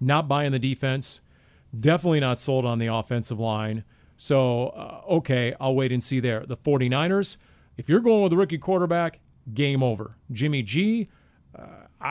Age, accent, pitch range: 40-59, American, 120-155 Hz